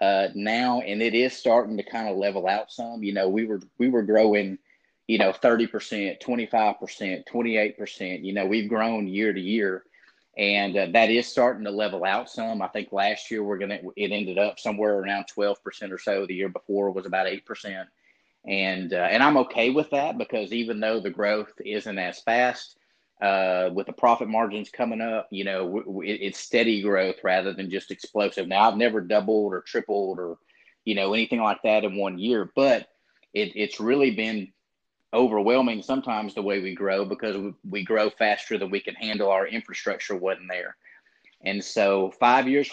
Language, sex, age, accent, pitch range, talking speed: English, male, 30-49, American, 100-115 Hz, 195 wpm